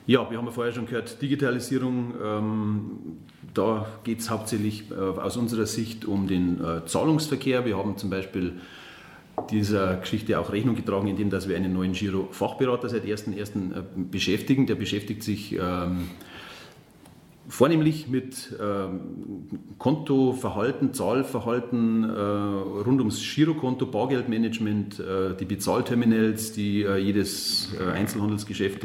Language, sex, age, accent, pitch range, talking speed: German, male, 40-59, German, 95-120 Hz, 130 wpm